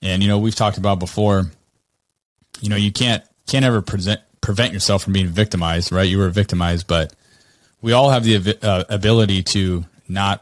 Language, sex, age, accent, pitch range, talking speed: English, male, 20-39, American, 90-110 Hz, 185 wpm